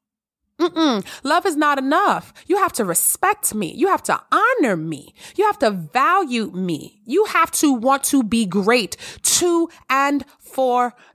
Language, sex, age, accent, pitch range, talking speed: English, female, 20-39, American, 215-345 Hz, 165 wpm